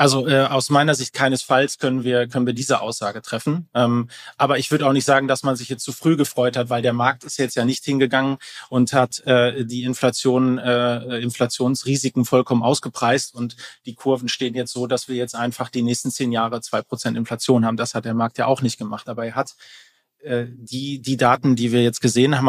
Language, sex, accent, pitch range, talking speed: German, male, German, 120-135 Hz, 220 wpm